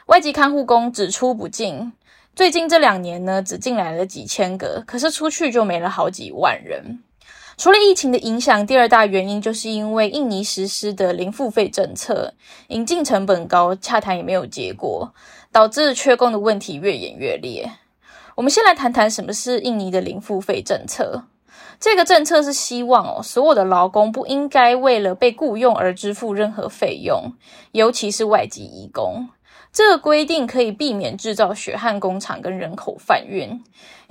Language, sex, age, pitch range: Chinese, female, 10-29, 205-270 Hz